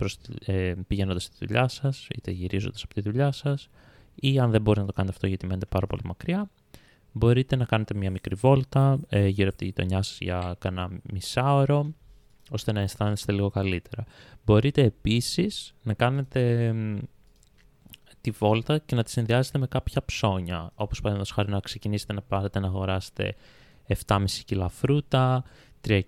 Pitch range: 95-125 Hz